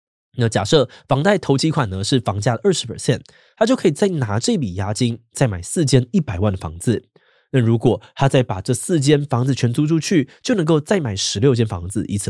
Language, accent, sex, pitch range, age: Chinese, native, male, 110-150 Hz, 20-39